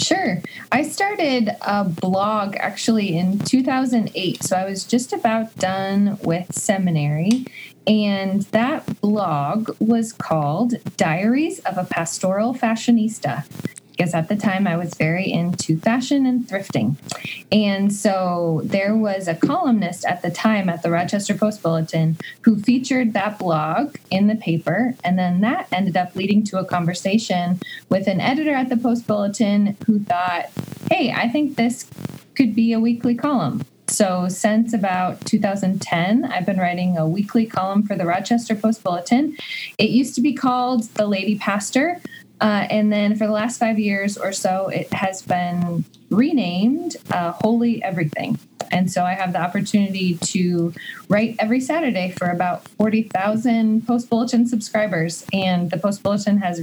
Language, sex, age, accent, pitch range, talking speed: English, female, 20-39, American, 180-225 Hz, 155 wpm